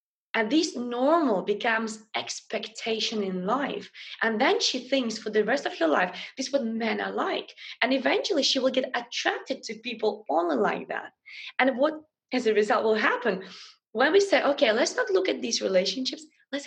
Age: 20-39